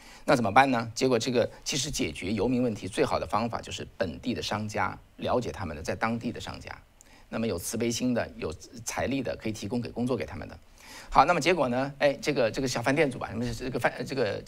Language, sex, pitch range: Chinese, male, 105-130 Hz